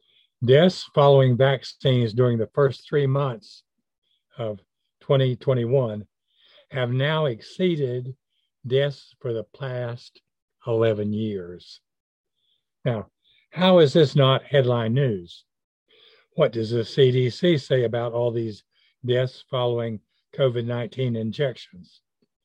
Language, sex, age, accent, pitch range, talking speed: English, male, 60-79, American, 115-140 Hz, 100 wpm